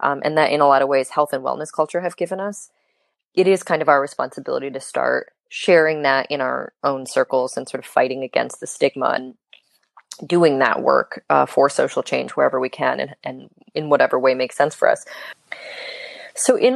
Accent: American